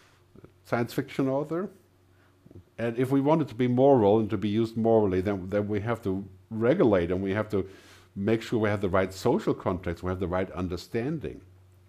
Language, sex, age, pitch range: English, male, 50-69, 90-115 Hz